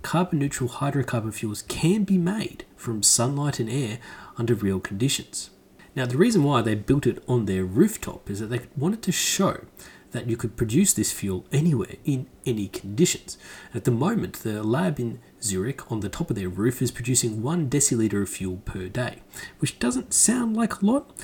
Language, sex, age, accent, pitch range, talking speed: English, male, 30-49, Australian, 110-160 Hz, 190 wpm